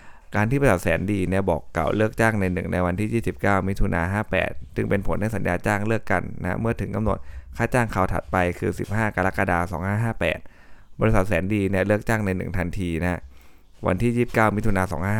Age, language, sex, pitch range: 20-39, Thai, male, 85-105 Hz